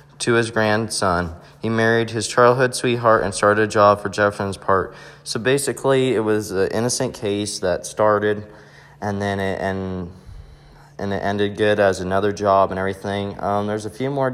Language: English